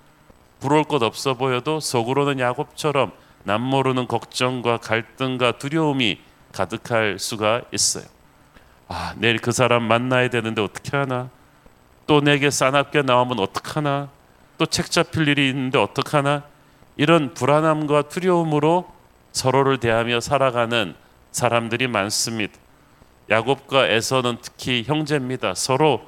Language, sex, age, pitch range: Korean, male, 40-59, 120-150 Hz